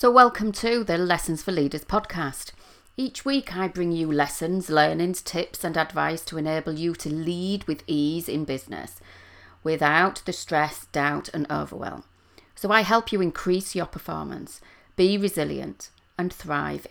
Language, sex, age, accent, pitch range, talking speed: English, female, 40-59, British, 150-185 Hz, 155 wpm